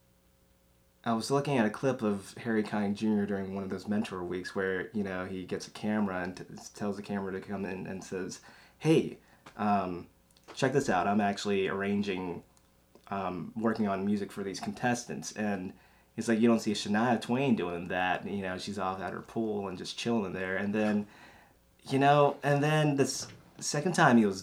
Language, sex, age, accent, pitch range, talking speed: English, male, 20-39, American, 95-115 Hz, 200 wpm